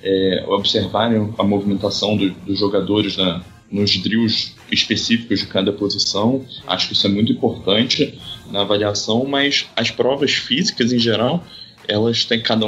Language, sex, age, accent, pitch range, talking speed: Portuguese, male, 20-39, Brazilian, 105-120 Hz, 145 wpm